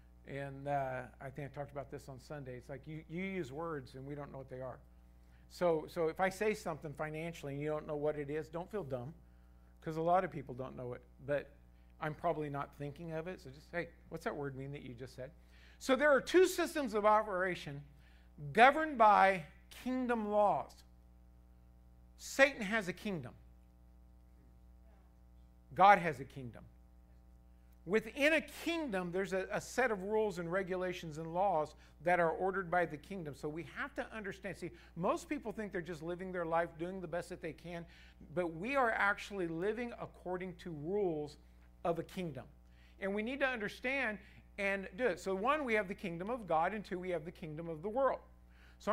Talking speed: 195 wpm